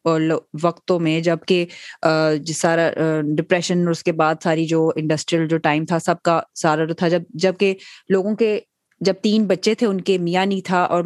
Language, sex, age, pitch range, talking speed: Urdu, female, 20-39, 160-185 Hz, 140 wpm